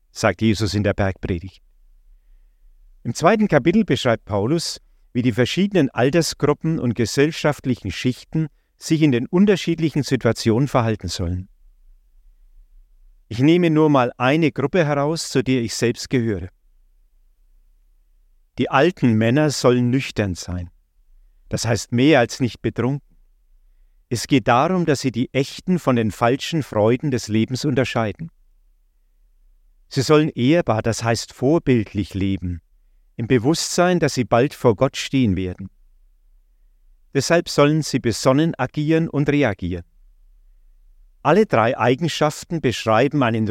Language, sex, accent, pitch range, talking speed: German, male, German, 90-145 Hz, 125 wpm